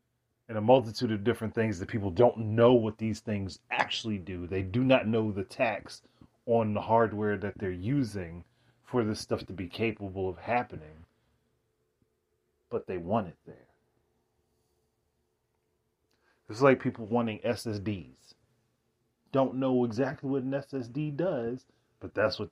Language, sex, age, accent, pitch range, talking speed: English, male, 30-49, American, 95-120 Hz, 145 wpm